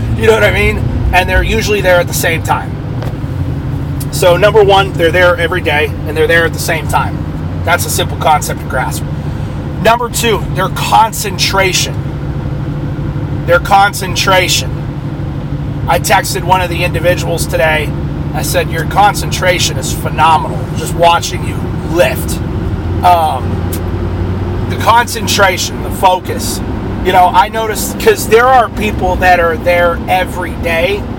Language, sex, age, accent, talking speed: English, male, 30-49, American, 140 wpm